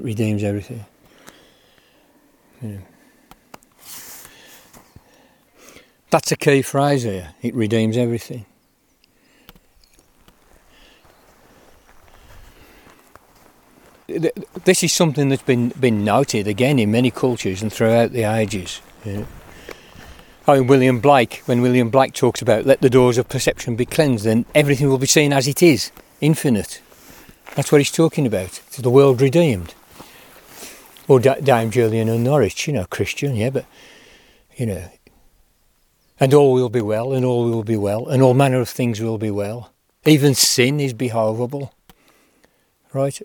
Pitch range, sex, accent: 115-140 Hz, male, British